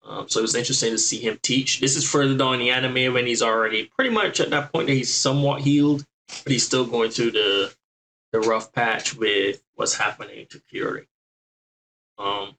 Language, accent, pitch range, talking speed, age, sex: English, American, 110-140 Hz, 205 wpm, 20-39, male